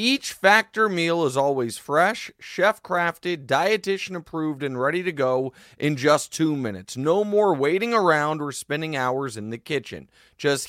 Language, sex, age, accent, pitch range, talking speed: English, male, 30-49, American, 135-195 Hz, 155 wpm